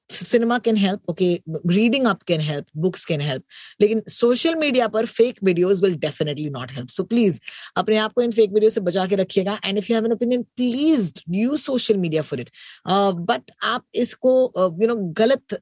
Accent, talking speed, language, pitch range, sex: native, 80 wpm, Hindi, 185-235 Hz, female